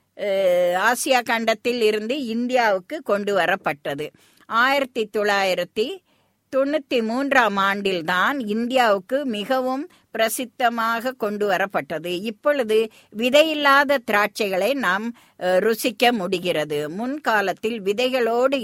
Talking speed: 75 wpm